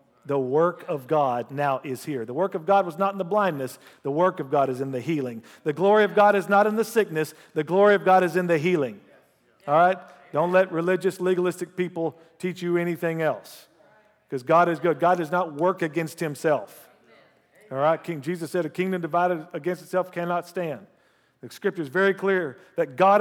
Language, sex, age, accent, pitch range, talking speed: English, male, 50-69, American, 165-195 Hz, 210 wpm